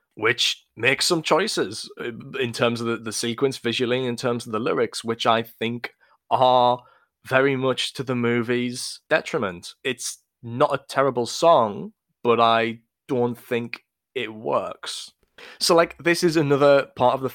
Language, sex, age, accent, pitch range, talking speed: English, male, 20-39, British, 115-145 Hz, 155 wpm